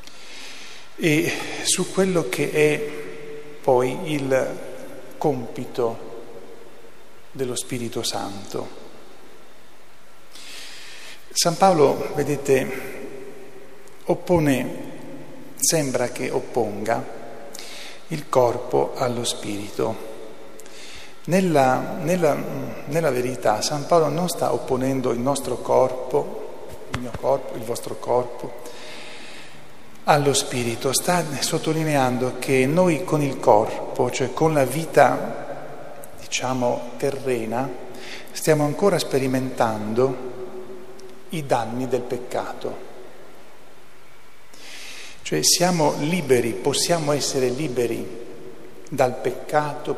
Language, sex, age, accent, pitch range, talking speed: Italian, male, 50-69, native, 125-160 Hz, 85 wpm